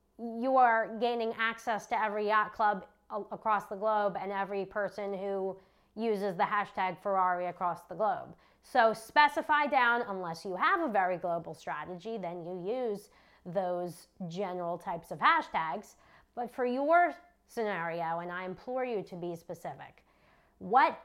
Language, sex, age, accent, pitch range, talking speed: English, female, 30-49, American, 195-280 Hz, 150 wpm